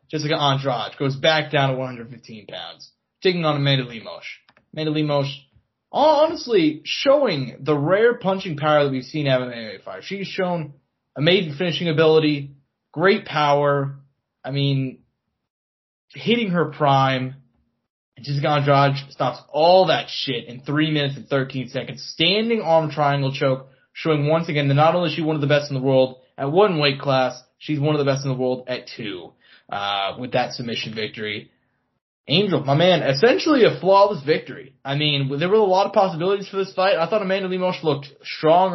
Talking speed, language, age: 175 wpm, English, 20-39